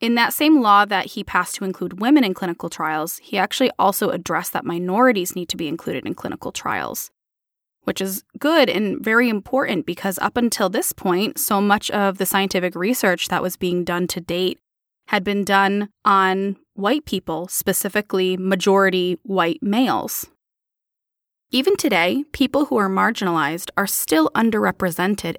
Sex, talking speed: female, 160 wpm